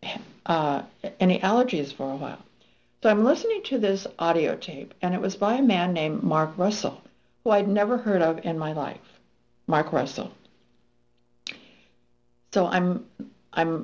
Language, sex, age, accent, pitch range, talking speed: English, female, 60-79, American, 155-220 Hz, 150 wpm